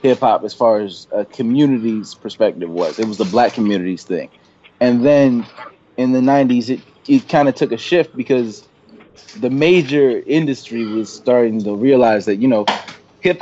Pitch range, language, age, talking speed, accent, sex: 110-135 Hz, English, 20-39, 175 wpm, American, male